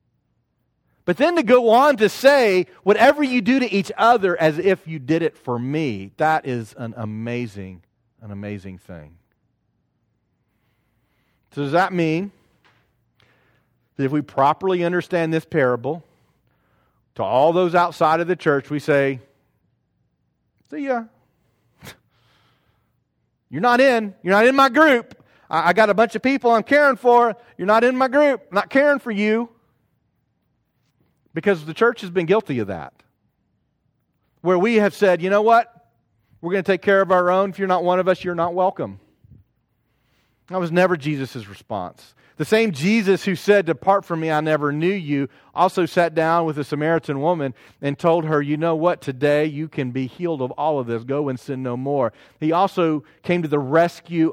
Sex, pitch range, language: male, 135-190 Hz, English